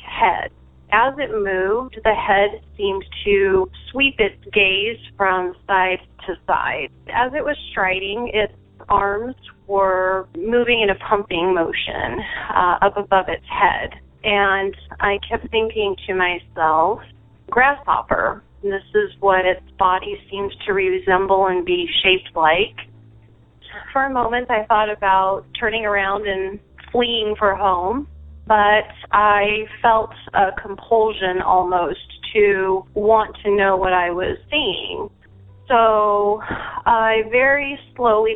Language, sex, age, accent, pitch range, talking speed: English, female, 30-49, American, 185-220 Hz, 125 wpm